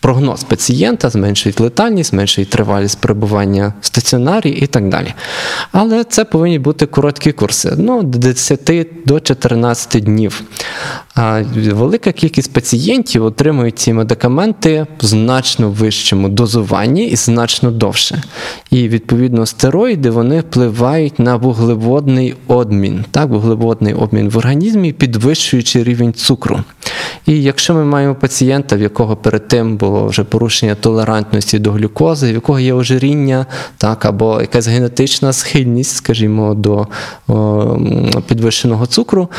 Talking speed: 130 wpm